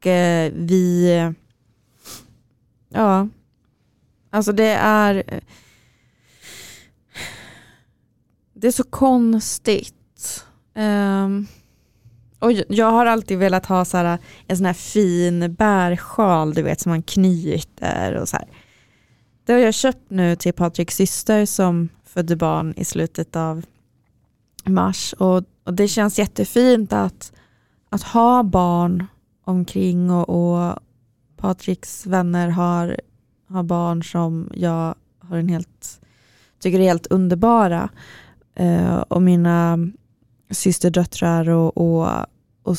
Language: Swedish